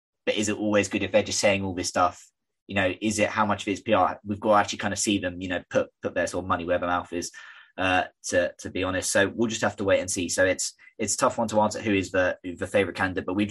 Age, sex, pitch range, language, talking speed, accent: 20-39, male, 90-105 Hz, English, 310 wpm, British